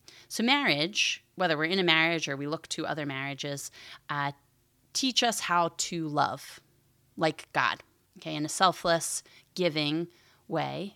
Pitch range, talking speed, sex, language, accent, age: 140-170 Hz, 150 wpm, female, English, American, 30-49